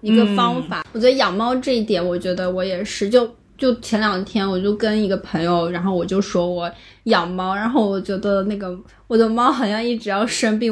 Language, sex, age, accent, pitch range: Chinese, female, 20-39, native, 205-280 Hz